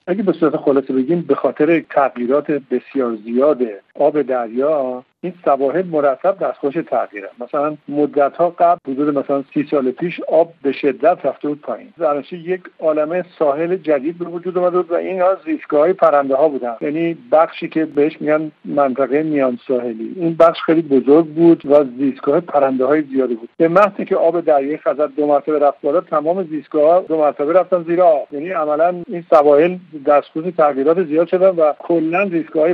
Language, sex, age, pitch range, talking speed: Persian, male, 50-69, 140-170 Hz, 165 wpm